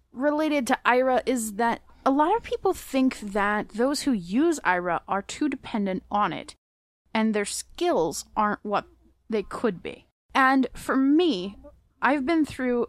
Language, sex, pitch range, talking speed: English, female, 195-250 Hz, 160 wpm